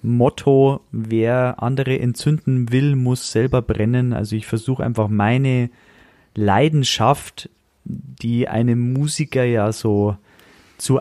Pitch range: 115-145 Hz